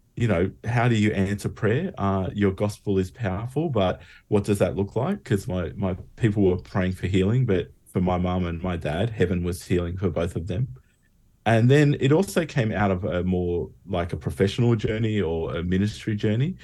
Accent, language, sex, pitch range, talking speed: Australian, English, male, 85-105 Hz, 205 wpm